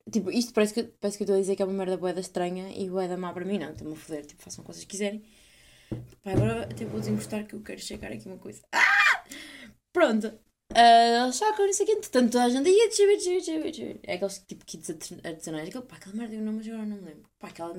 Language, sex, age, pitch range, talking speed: Portuguese, female, 20-39, 185-225 Hz, 235 wpm